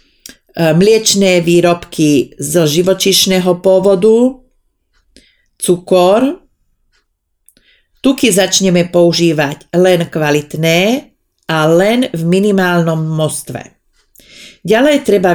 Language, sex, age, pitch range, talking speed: Slovak, female, 40-59, 155-200 Hz, 70 wpm